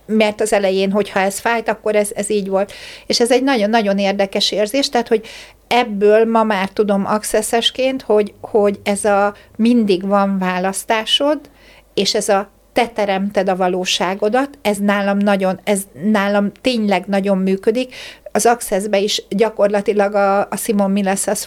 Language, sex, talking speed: Hungarian, female, 155 wpm